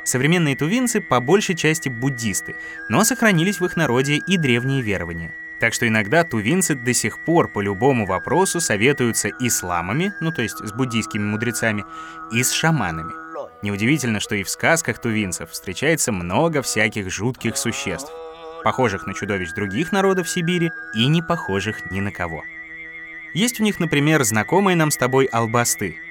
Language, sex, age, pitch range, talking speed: Russian, male, 20-39, 105-165 Hz, 155 wpm